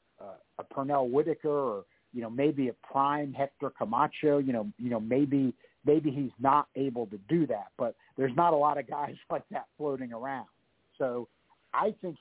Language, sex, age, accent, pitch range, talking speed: English, male, 50-69, American, 120-150 Hz, 185 wpm